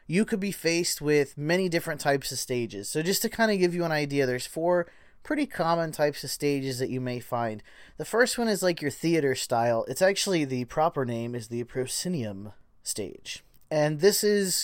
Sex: male